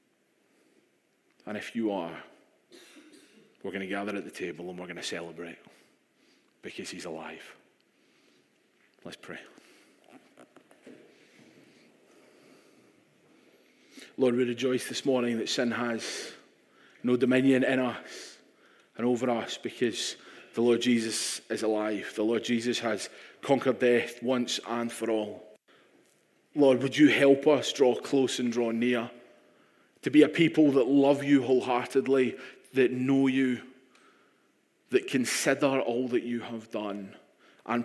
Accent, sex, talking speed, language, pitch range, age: British, male, 130 wpm, English, 110-130 Hz, 30-49